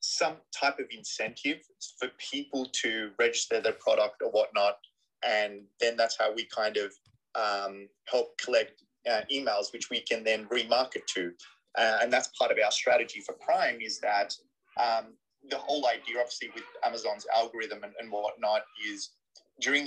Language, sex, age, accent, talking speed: English, male, 20-39, Australian, 165 wpm